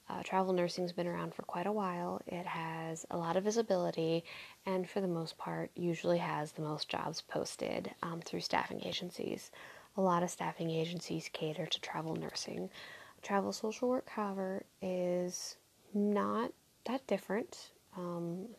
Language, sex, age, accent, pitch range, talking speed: English, female, 20-39, American, 165-190 Hz, 160 wpm